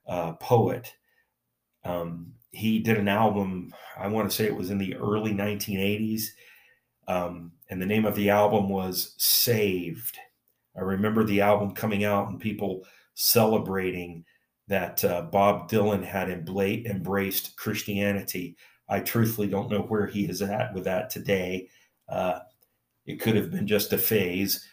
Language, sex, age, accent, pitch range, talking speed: English, male, 40-59, American, 95-105 Hz, 150 wpm